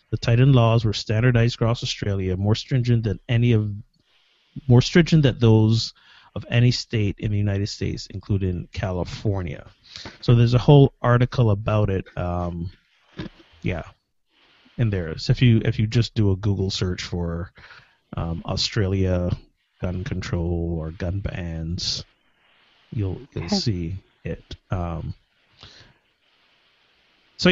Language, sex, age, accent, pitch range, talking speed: English, male, 30-49, American, 95-125 Hz, 130 wpm